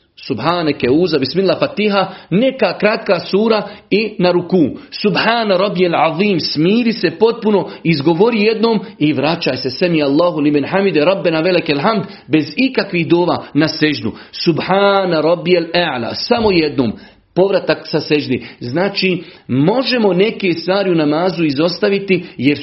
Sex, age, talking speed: male, 40-59, 125 wpm